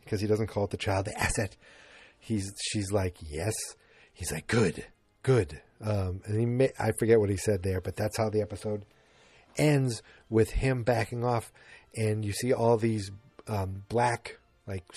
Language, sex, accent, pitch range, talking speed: English, male, American, 100-125 Hz, 180 wpm